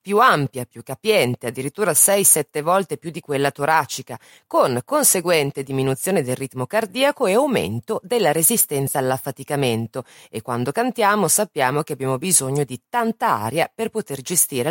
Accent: native